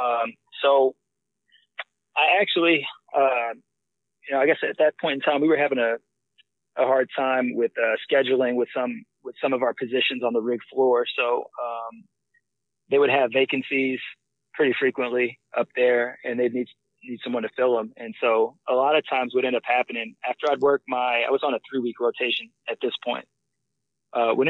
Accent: American